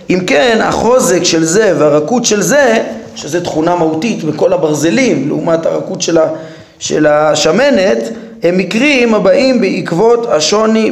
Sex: male